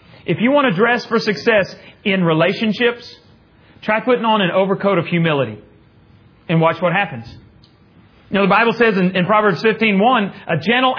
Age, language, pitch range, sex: 40-59, English, 170-225 Hz, male